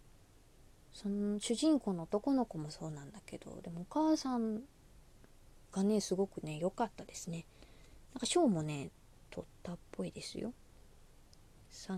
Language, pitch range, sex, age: Japanese, 170-250 Hz, female, 20-39